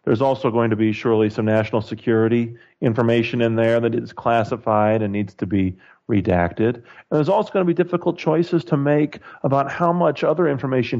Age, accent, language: 40-59, American, English